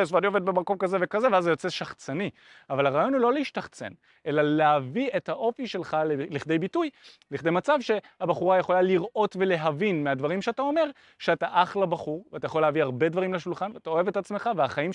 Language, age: Hebrew, 30-49